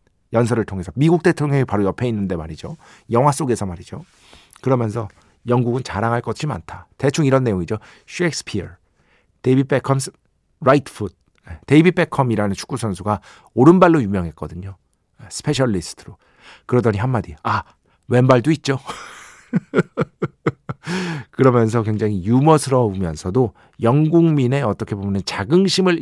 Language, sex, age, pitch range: Korean, male, 50-69, 105-155 Hz